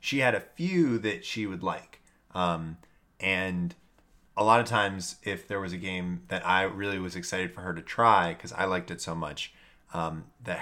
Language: English